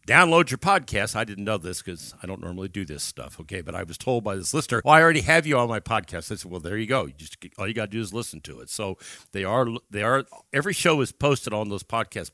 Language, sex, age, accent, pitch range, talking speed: English, male, 50-69, American, 100-130 Hz, 280 wpm